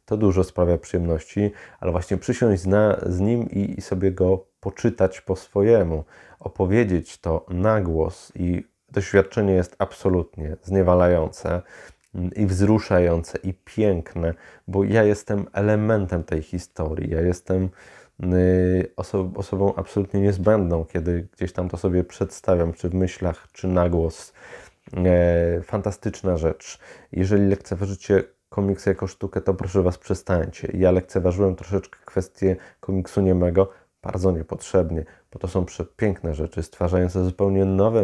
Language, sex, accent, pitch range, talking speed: Polish, male, native, 90-100 Hz, 125 wpm